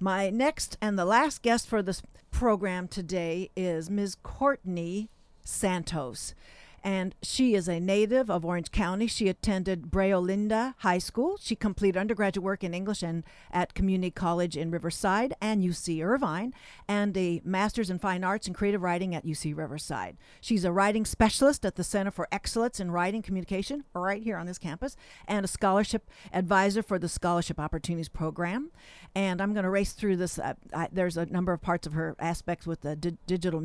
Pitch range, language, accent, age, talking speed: 175-225 Hz, English, American, 50-69, 180 wpm